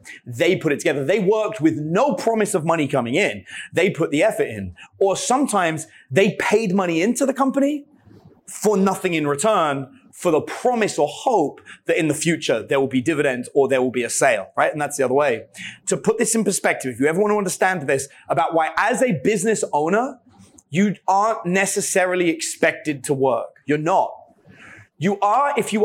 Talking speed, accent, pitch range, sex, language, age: 195 wpm, British, 155-210 Hz, male, English, 30-49